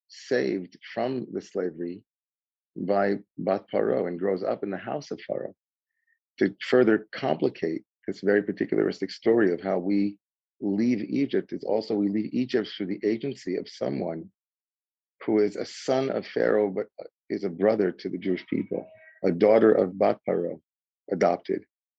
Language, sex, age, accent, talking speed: English, male, 40-59, American, 155 wpm